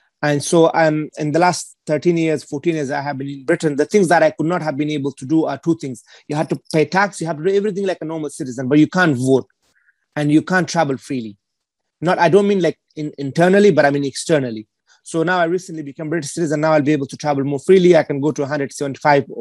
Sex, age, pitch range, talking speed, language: male, 30-49, 140-165 Hz, 255 wpm, English